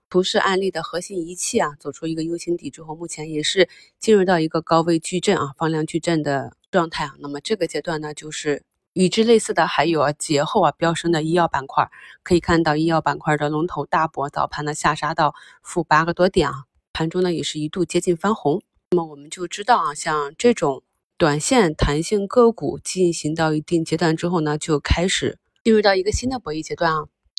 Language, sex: Chinese, female